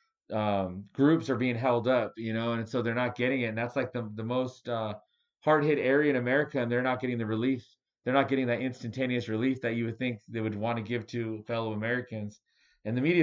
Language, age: English, 30-49